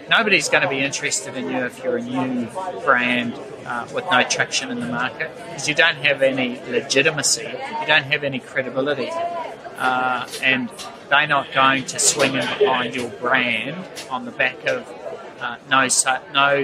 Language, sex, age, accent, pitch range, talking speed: English, male, 30-49, Australian, 130-165 Hz, 175 wpm